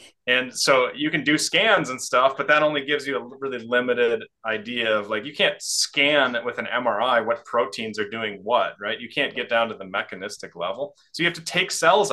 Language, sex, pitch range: English, male, 110-155 Hz